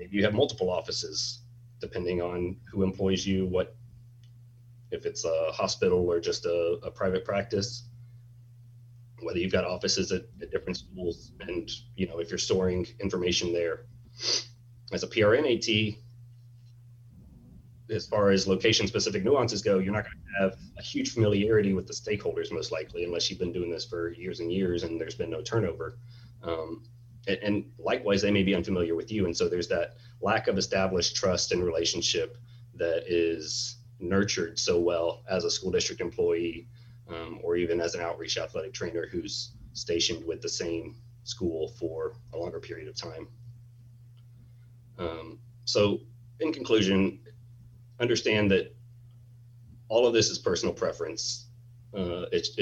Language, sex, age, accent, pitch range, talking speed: English, male, 30-49, American, 95-120 Hz, 155 wpm